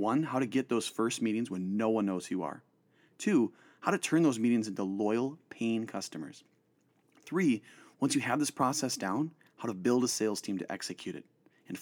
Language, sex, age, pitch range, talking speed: English, male, 30-49, 100-125 Hz, 210 wpm